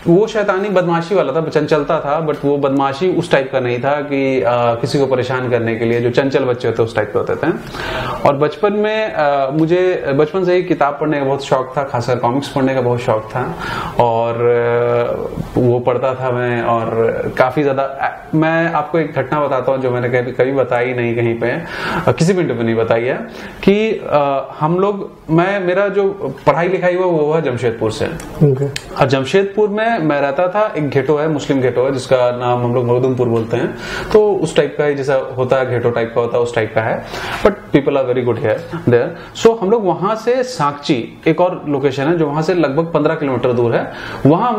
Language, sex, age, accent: Hindi, male, 30-49, native